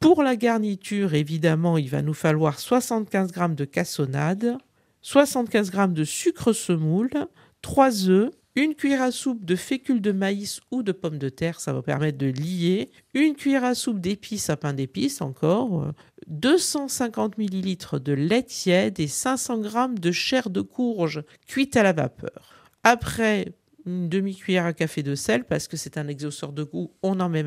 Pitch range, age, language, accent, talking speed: 155-220 Hz, 50-69, French, French, 175 wpm